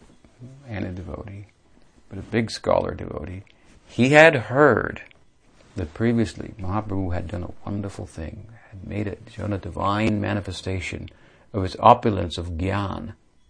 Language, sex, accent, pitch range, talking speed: English, male, American, 90-110 Hz, 140 wpm